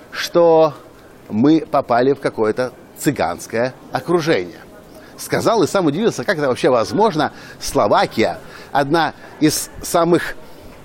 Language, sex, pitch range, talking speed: Russian, male, 125-165 Hz, 105 wpm